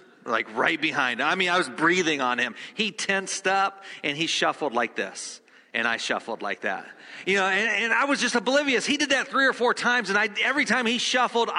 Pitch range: 120-185 Hz